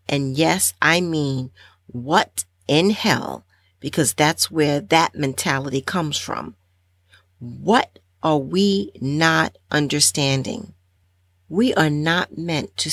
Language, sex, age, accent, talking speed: English, female, 40-59, American, 110 wpm